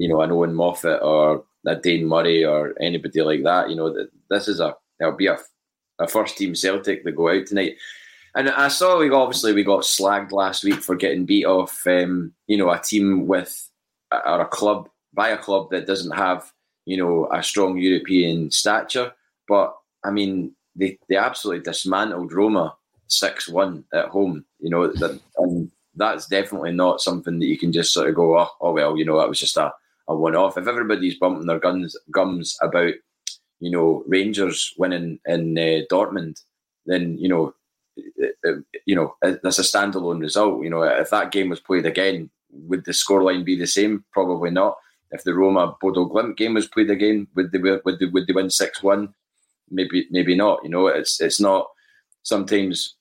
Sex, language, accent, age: male, English, British, 20-39